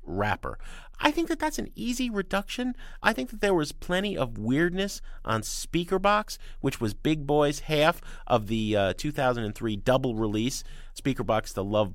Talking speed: 160 wpm